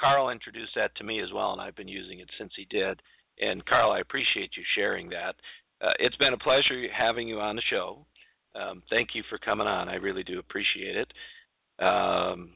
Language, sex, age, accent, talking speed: English, male, 50-69, American, 210 wpm